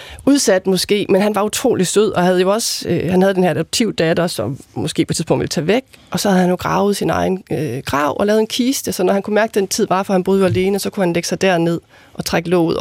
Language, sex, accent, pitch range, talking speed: Danish, female, native, 170-210 Hz, 290 wpm